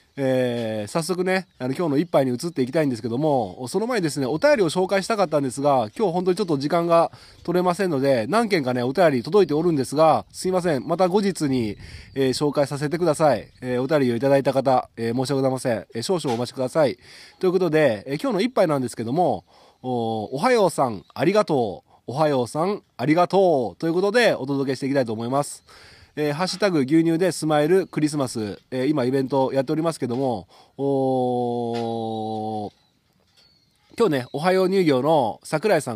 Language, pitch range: Japanese, 125-170 Hz